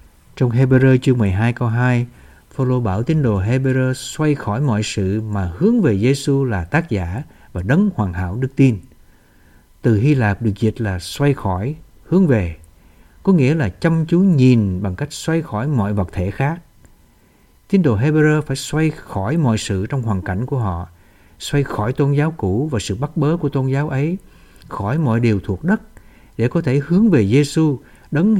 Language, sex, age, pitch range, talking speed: Vietnamese, male, 60-79, 100-145 Hz, 190 wpm